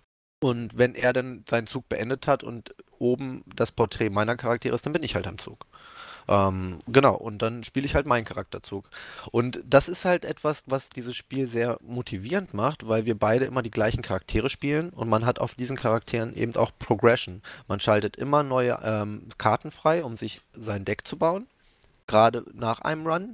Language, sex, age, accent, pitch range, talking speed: German, male, 20-39, German, 105-130 Hz, 195 wpm